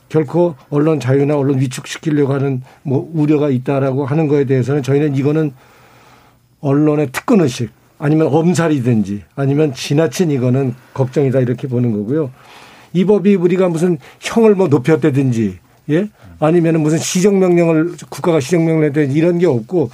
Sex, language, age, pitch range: male, Korean, 50-69, 140-170 Hz